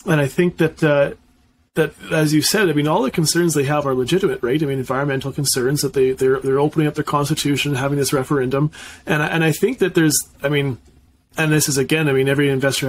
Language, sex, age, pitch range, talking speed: English, male, 30-49, 135-155 Hz, 240 wpm